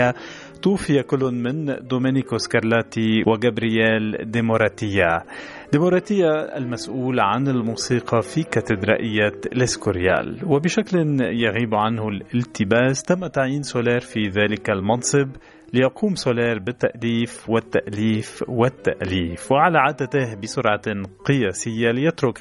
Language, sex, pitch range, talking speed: Arabic, male, 110-130 Hz, 90 wpm